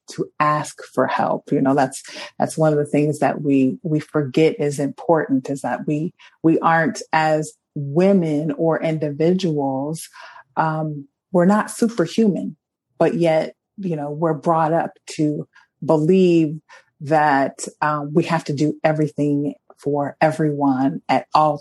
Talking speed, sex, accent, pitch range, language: 140 wpm, female, American, 145-165 Hz, English